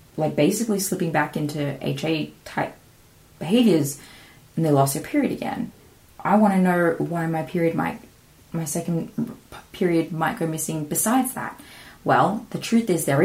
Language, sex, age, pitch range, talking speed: English, female, 20-39, 145-195 Hz, 160 wpm